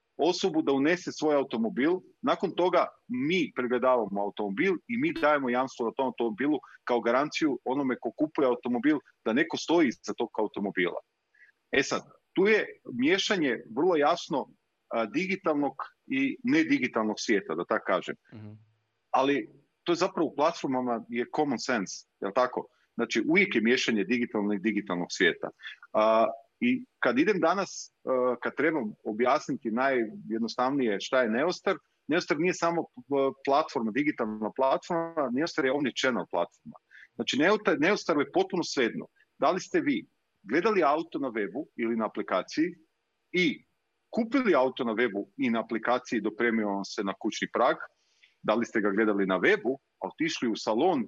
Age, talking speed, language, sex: 40-59, 150 wpm, Croatian, male